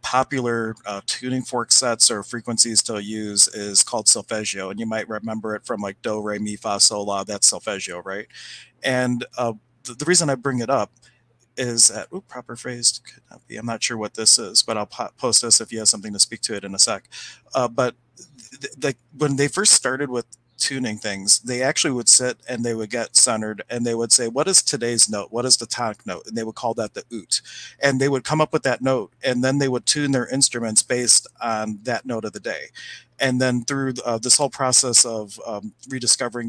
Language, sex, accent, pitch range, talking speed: English, male, American, 110-125 Hz, 230 wpm